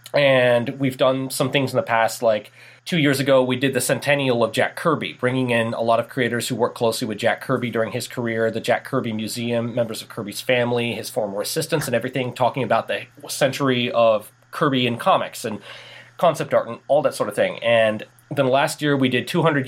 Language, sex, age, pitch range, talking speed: English, male, 30-49, 115-140 Hz, 215 wpm